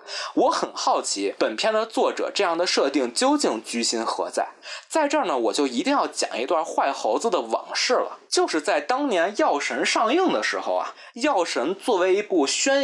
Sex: male